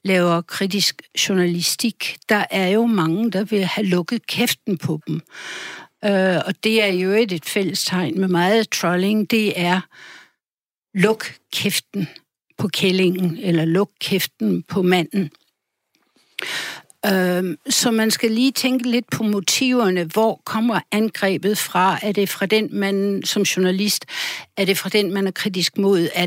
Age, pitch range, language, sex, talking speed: 60-79, 180-215 Hz, Danish, female, 140 wpm